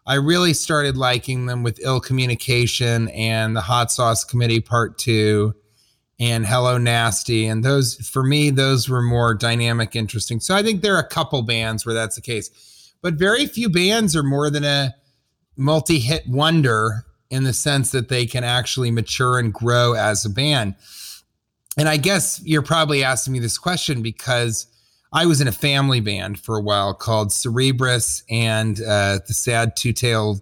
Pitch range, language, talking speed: 115-145 Hz, English, 175 wpm